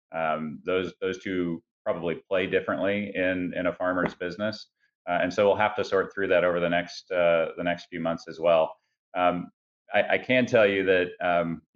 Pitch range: 85-95 Hz